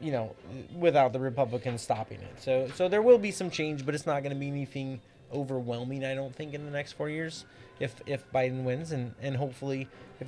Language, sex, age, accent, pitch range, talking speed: English, male, 20-39, American, 115-140 Hz, 220 wpm